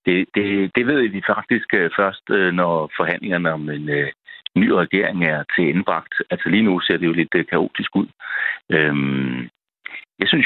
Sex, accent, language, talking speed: male, native, Danish, 155 wpm